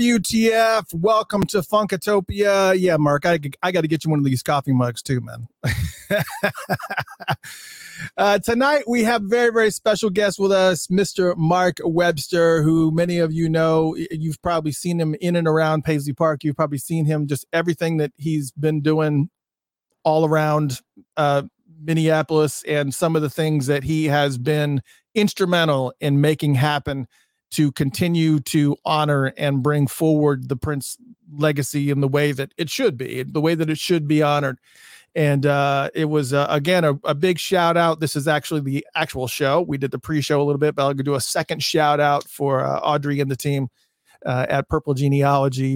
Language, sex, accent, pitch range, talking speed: English, male, American, 140-170 Hz, 180 wpm